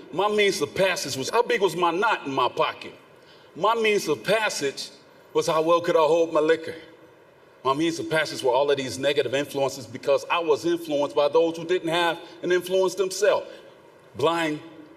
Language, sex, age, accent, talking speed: English, male, 40-59, American, 195 wpm